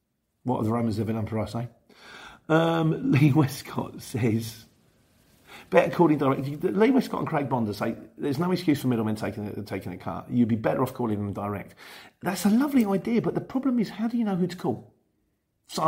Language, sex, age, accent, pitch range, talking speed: English, male, 40-59, British, 105-135 Hz, 210 wpm